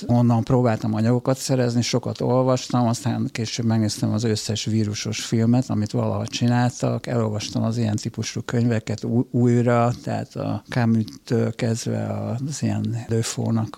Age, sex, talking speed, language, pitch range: 50-69, male, 125 wpm, Hungarian, 110-125 Hz